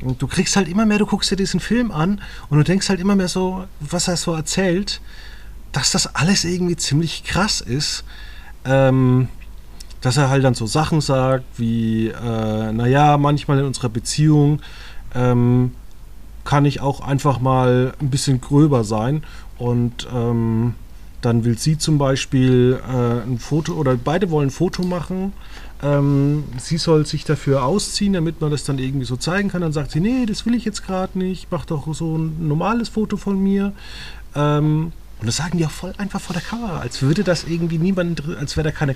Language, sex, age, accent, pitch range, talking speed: German, male, 30-49, German, 125-165 Hz, 185 wpm